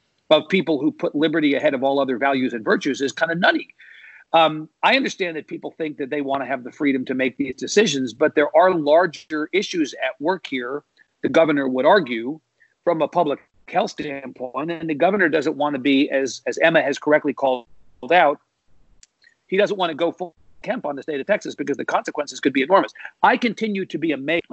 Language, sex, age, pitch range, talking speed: English, male, 50-69, 145-200 Hz, 205 wpm